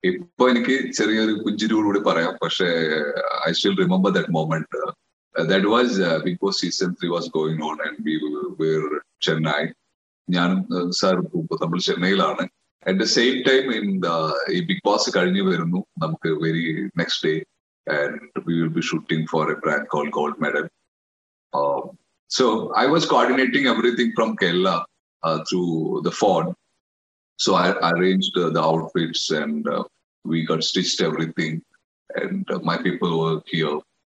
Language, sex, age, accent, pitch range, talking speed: English, male, 30-49, Indian, 80-105 Hz, 135 wpm